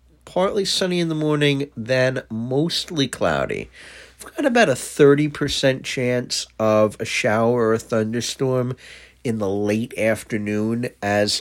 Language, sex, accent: English, male, American